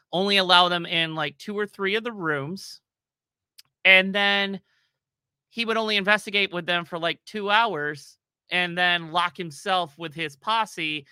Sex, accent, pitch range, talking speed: male, American, 135-165 Hz, 160 wpm